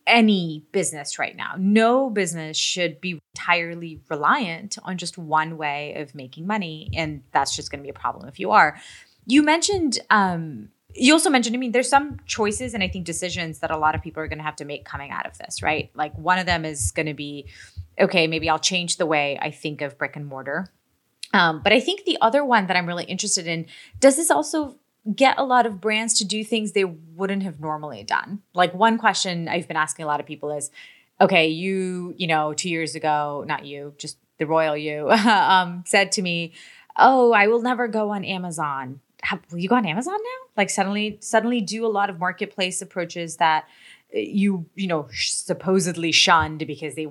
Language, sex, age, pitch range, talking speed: English, female, 20-39, 150-210 Hz, 210 wpm